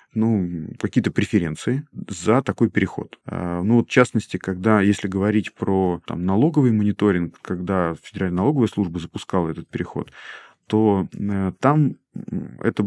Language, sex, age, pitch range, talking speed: Russian, male, 30-49, 90-115 Hz, 125 wpm